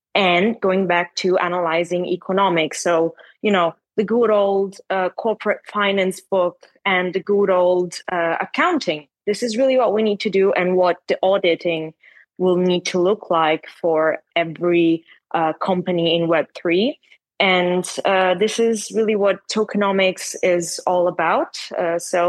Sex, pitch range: female, 170-200 Hz